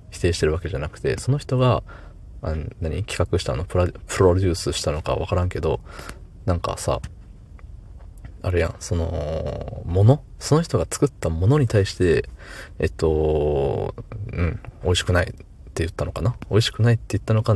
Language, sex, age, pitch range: Japanese, male, 20-39, 80-105 Hz